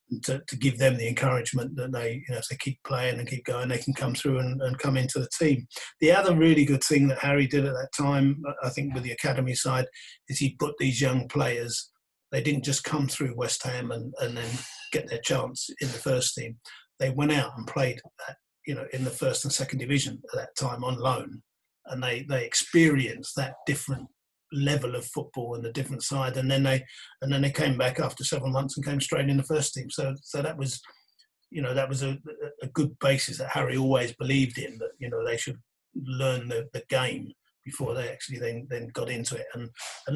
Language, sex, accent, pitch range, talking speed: English, male, British, 125-140 Hz, 230 wpm